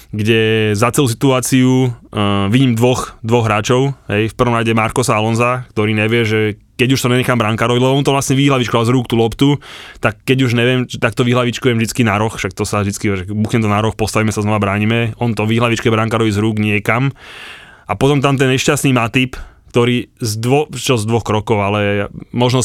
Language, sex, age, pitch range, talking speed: Slovak, male, 20-39, 110-130 Hz, 200 wpm